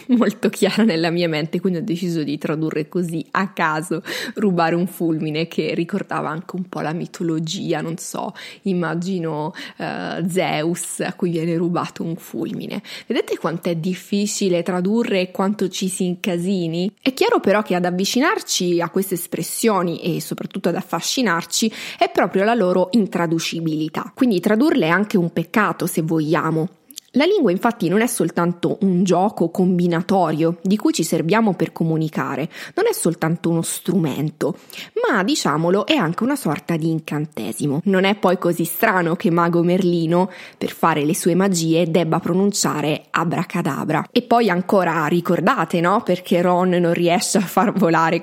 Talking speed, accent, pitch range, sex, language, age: 155 wpm, native, 165-200 Hz, female, Italian, 20-39